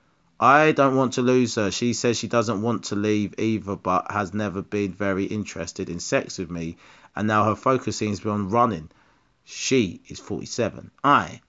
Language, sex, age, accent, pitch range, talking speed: English, male, 30-49, British, 90-120 Hz, 195 wpm